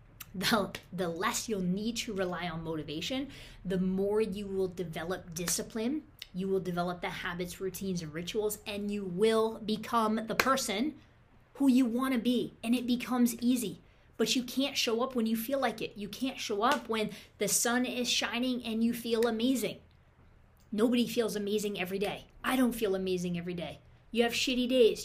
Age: 20-39